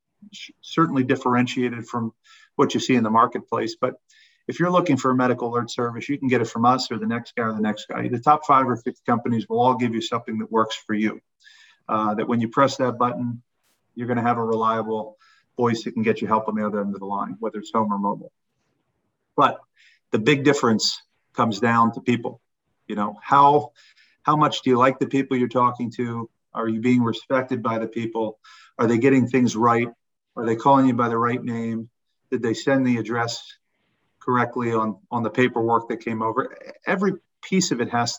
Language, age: English, 40-59